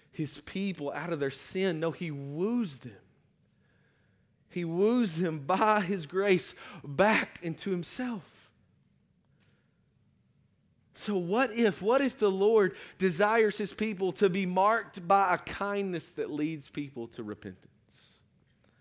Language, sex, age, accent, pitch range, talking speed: English, male, 30-49, American, 150-215 Hz, 130 wpm